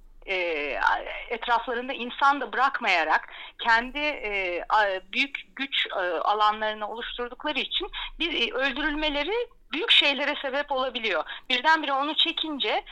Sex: female